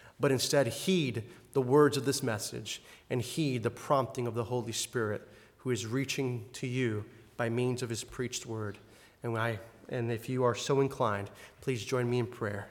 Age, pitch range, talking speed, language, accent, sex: 30-49, 120-155 Hz, 195 wpm, English, American, male